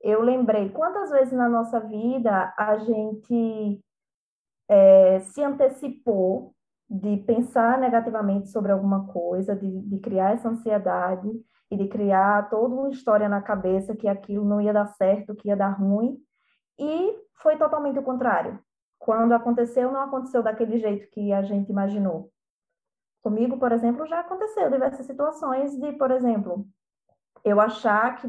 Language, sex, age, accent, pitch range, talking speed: Portuguese, female, 20-39, Brazilian, 200-265 Hz, 145 wpm